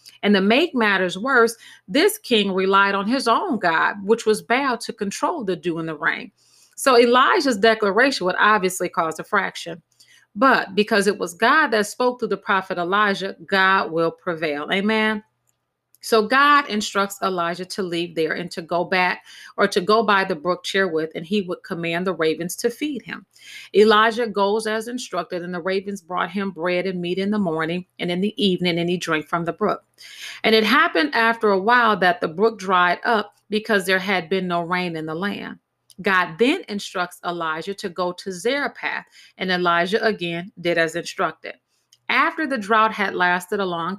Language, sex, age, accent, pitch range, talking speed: English, female, 40-59, American, 180-225 Hz, 190 wpm